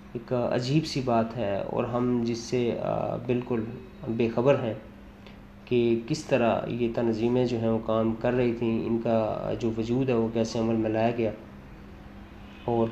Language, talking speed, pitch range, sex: Urdu, 165 wpm, 115-135 Hz, male